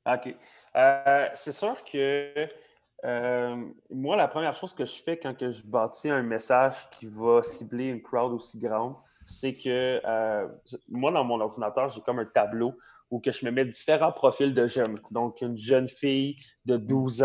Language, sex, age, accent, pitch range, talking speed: French, male, 20-39, Canadian, 120-135 Hz, 180 wpm